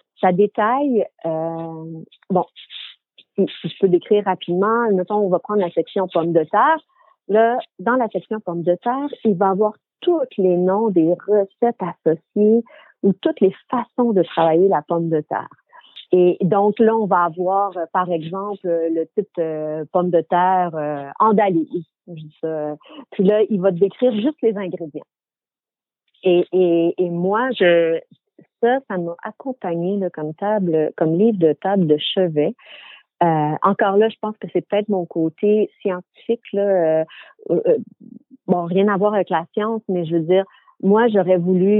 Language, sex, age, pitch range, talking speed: French, female, 50-69, 175-215 Hz, 165 wpm